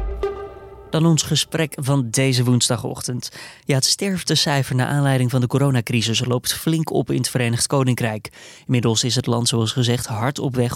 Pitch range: 125-150 Hz